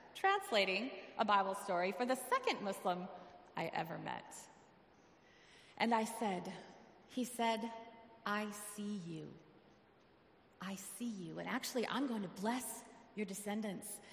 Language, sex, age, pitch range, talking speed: English, female, 30-49, 195-240 Hz, 125 wpm